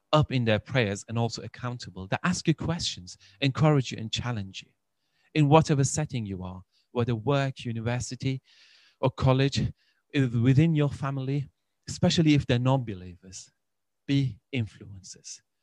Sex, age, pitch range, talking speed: male, 30-49, 100-130 Hz, 135 wpm